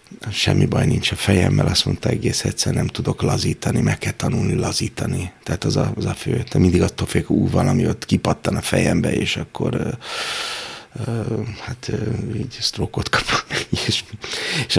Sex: male